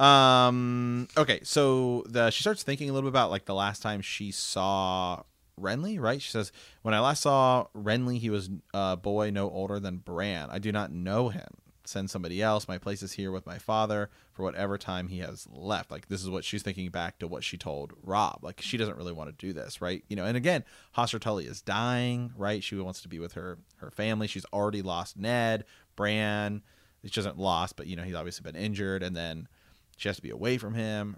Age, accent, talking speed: 30-49, American, 225 wpm